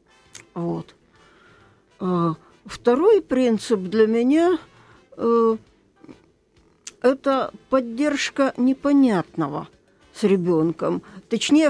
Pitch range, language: 205-265 Hz, Russian